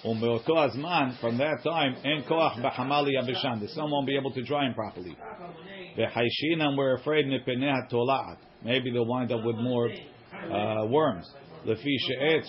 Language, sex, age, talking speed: English, male, 50-69, 140 wpm